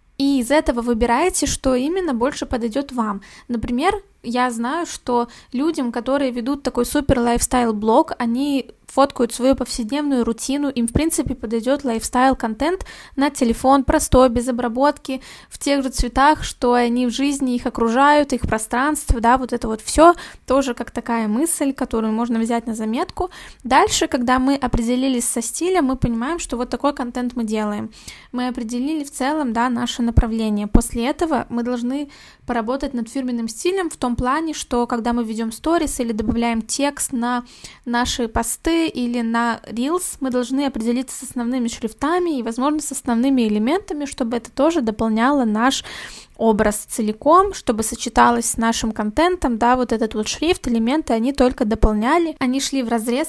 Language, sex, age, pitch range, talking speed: Russian, female, 20-39, 235-285 Hz, 160 wpm